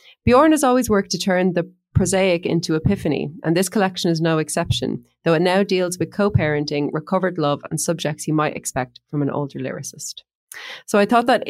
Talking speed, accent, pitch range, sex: 195 wpm, Irish, 140-175 Hz, female